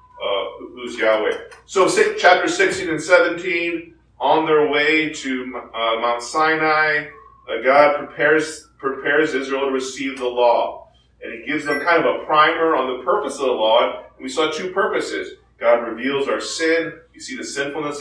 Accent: American